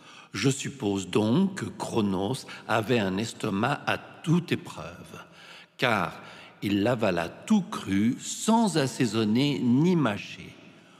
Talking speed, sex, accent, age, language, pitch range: 115 wpm, male, French, 60-79, French, 115-160 Hz